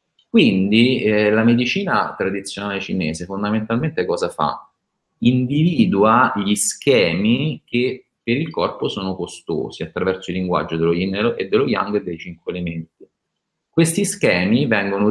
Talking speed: 130 wpm